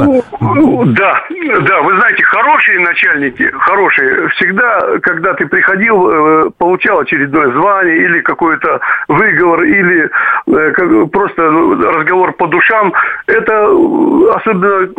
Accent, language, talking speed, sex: native, Russian, 100 wpm, male